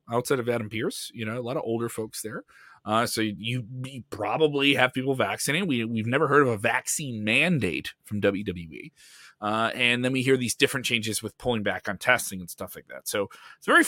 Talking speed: 220 wpm